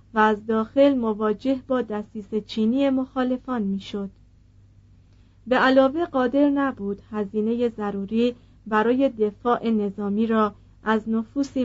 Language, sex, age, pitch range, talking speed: Persian, female, 40-59, 205-250 Hz, 110 wpm